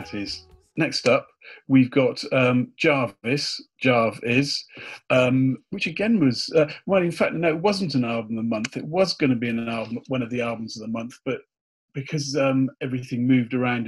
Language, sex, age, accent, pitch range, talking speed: English, male, 40-59, British, 115-140 Hz, 195 wpm